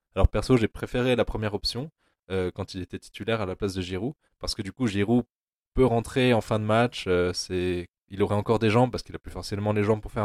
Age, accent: 20-39, French